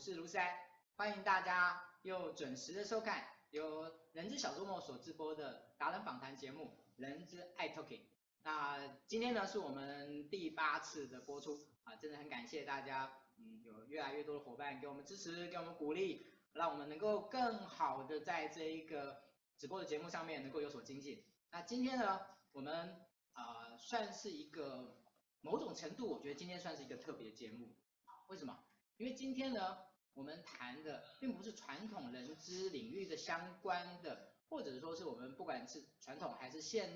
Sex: male